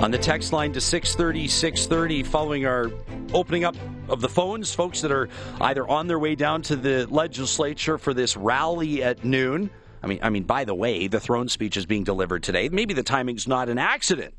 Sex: male